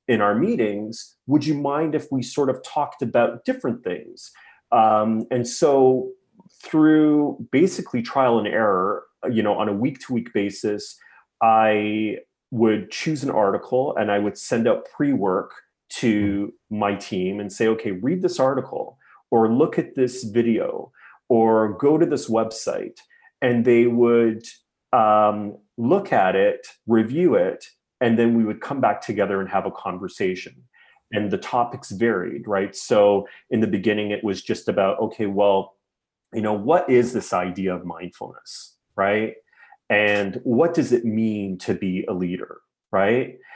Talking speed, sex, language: 155 wpm, male, English